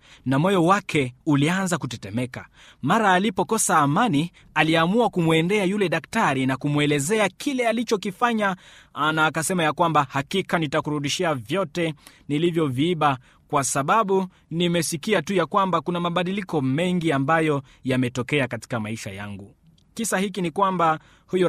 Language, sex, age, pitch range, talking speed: Swahili, male, 30-49, 135-175 Hz, 120 wpm